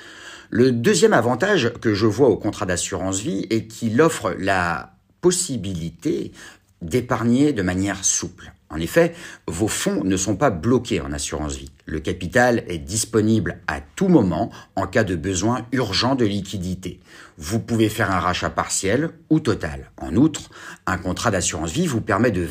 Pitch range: 90-120 Hz